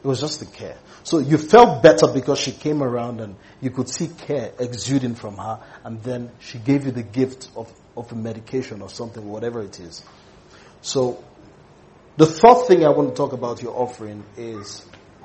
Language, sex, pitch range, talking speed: English, male, 120-145 Hz, 195 wpm